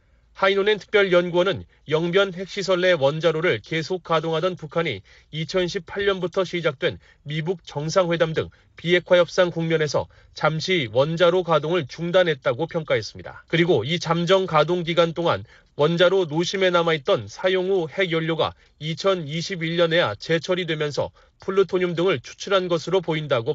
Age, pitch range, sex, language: 30-49, 150-180 Hz, male, Korean